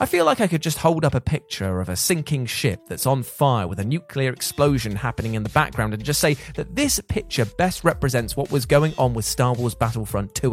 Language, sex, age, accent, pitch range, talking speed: English, male, 30-49, British, 120-165 Hz, 240 wpm